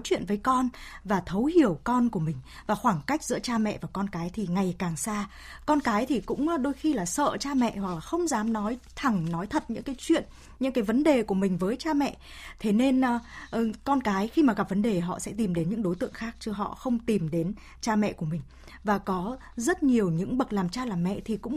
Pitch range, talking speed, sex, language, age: 195-255 Hz, 255 wpm, female, Vietnamese, 20-39